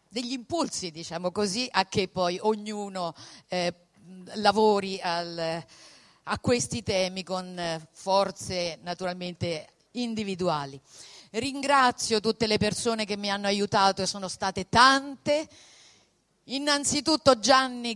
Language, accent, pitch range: Italian, native, 190-235 Hz